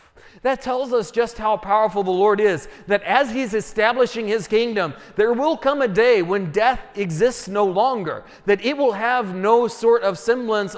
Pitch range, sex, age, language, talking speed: 185-235 Hz, male, 40-59, English, 185 wpm